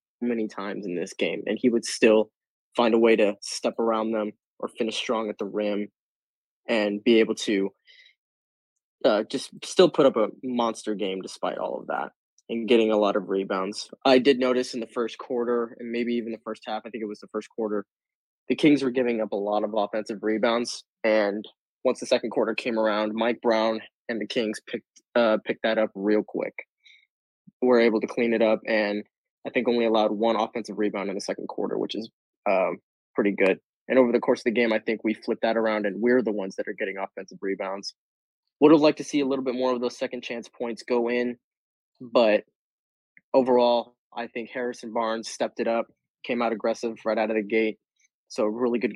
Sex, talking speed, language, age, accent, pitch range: male, 215 wpm, English, 20-39, American, 110-120 Hz